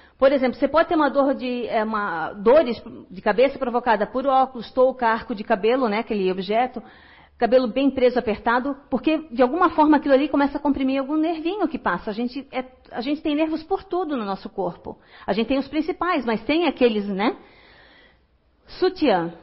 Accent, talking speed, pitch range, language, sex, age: Brazilian, 190 wpm, 235-285 Hz, Portuguese, female, 40-59